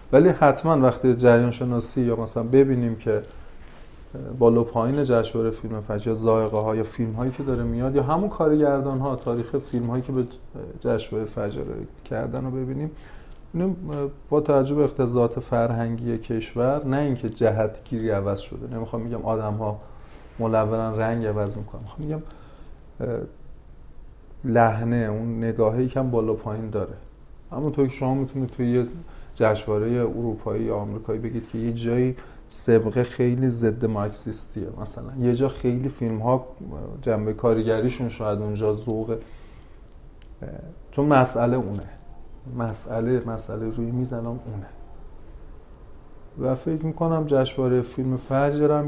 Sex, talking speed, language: male, 135 wpm, Persian